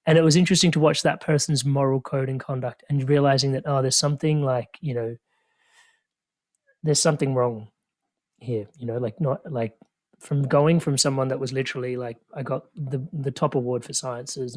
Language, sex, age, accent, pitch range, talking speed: English, male, 30-49, Australian, 125-150 Hz, 190 wpm